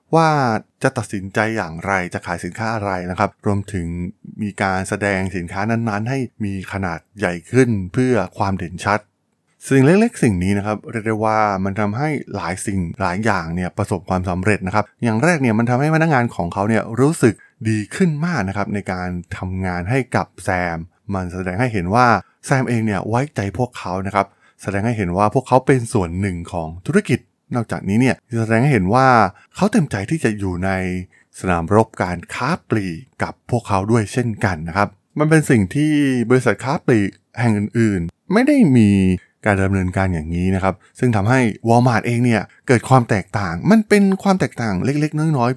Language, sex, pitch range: Thai, male, 95-125 Hz